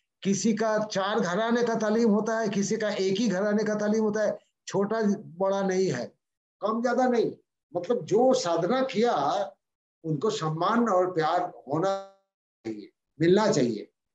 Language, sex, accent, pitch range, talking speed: Hindi, male, native, 165-220 Hz, 155 wpm